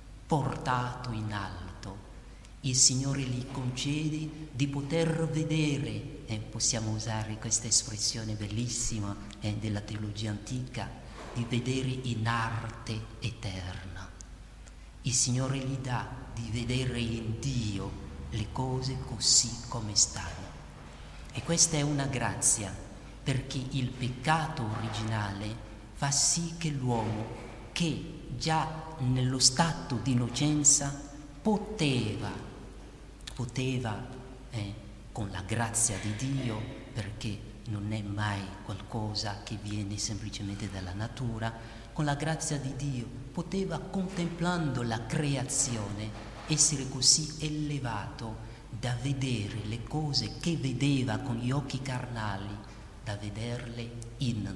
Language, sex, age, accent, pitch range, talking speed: Italian, male, 40-59, native, 110-135 Hz, 110 wpm